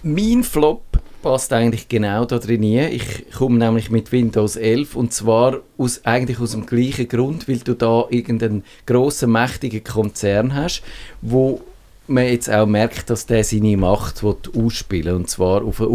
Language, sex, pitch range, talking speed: German, male, 110-130 Hz, 170 wpm